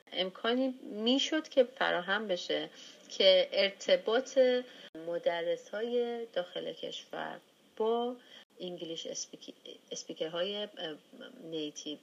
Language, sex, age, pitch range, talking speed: Persian, female, 30-49, 165-230 Hz, 70 wpm